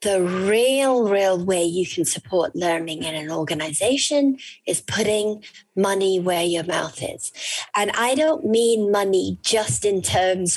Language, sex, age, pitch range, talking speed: English, female, 40-59, 185-255 Hz, 150 wpm